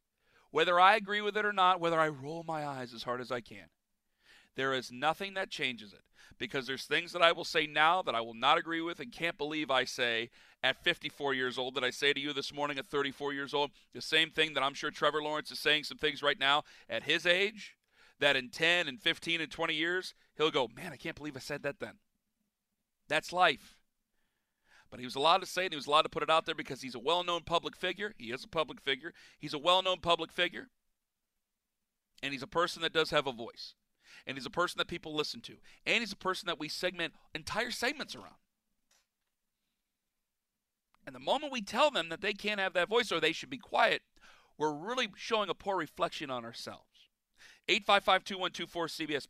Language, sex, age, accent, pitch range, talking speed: English, male, 40-59, American, 140-185 Hz, 220 wpm